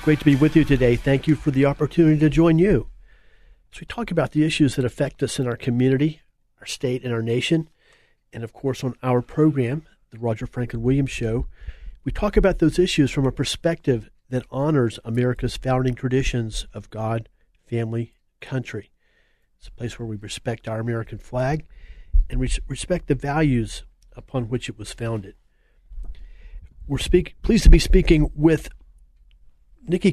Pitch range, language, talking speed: 120-150 Hz, English, 170 wpm